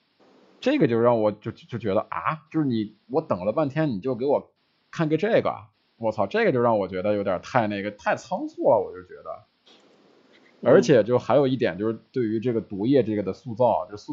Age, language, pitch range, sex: 20-39, Chinese, 110-145 Hz, male